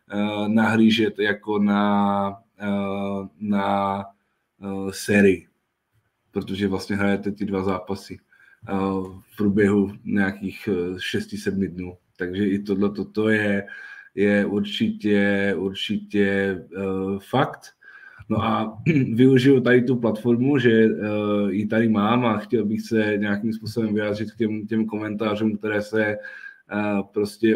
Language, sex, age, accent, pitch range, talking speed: Czech, male, 20-39, native, 100-110 Hz, 110 wpm